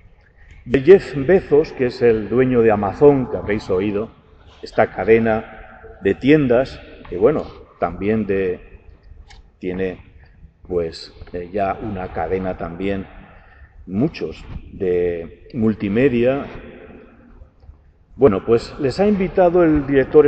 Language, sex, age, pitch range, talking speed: Spanish, male, 40-59, 90-140 Hz, 105 wpm